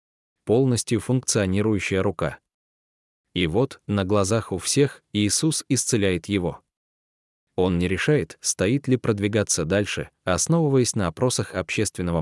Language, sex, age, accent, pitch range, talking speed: Russian, male, 20-39, native, 95-125 Hz, 115 wpm